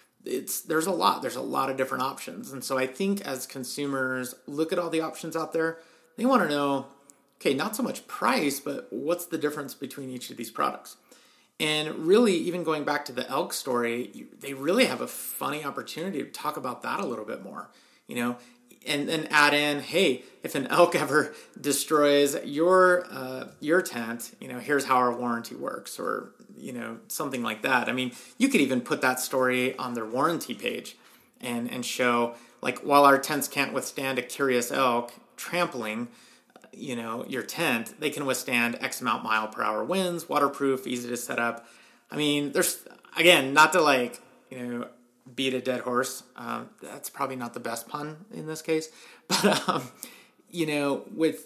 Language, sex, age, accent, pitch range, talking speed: English, male, 30-49, American, 125-155 Hz, 190 wpm